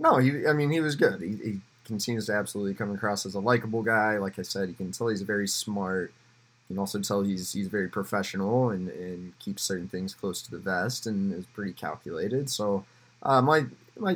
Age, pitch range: 20-39, 95-120 Hz